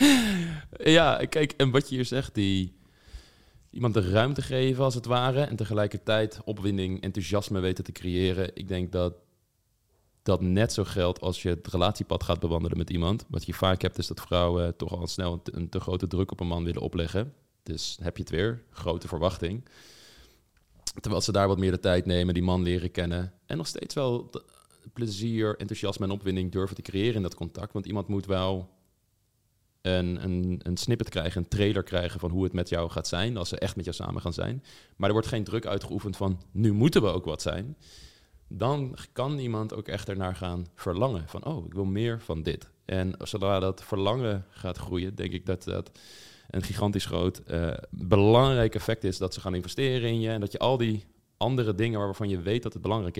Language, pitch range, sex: Dutch, 90-110 Hz, male